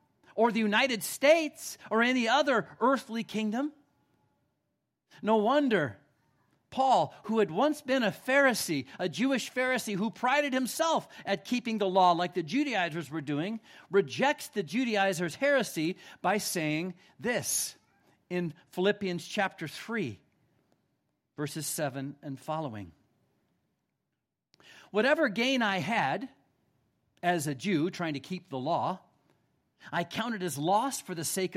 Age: 50-69